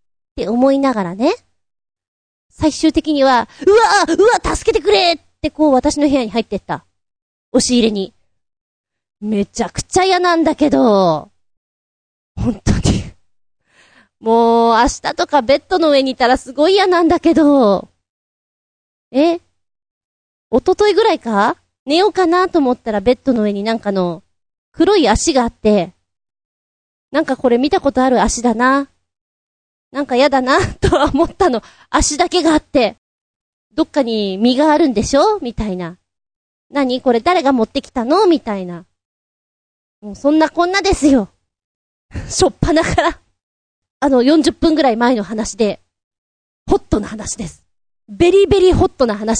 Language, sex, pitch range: Japanese, female, 215-330 Hz